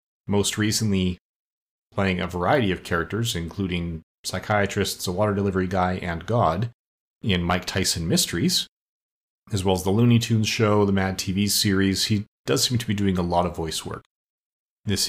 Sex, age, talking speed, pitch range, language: male, 30-49, 165 wpm, 90-110 Hz, English